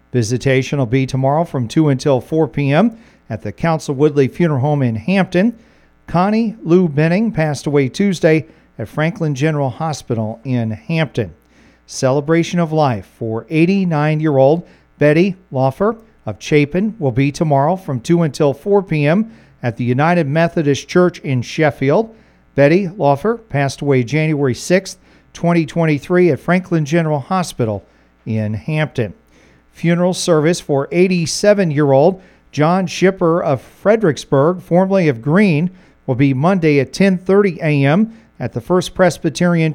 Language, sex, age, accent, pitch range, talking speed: English, male, 40-59, American, 135-180 Hz, 130 wpm